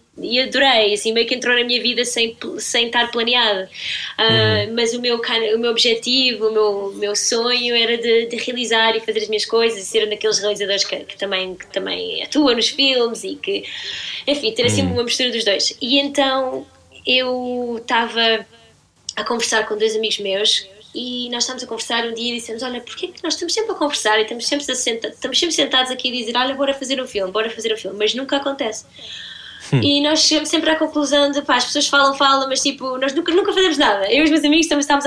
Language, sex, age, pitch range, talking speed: Portuguese, female, 20-39, 220-275 Hz, 220 wpm